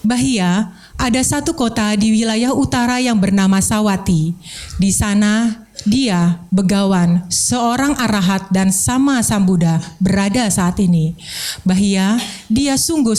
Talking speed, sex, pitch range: 115 wpm, female, 195-245 Hz